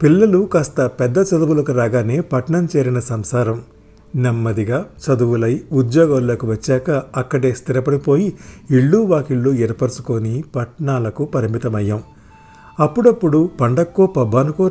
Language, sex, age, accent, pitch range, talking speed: Telugu, male, 50-69, native, 120-155 Hz, 90 wpm